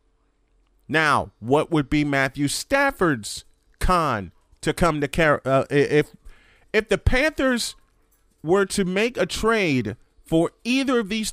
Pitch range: 145-210 Hz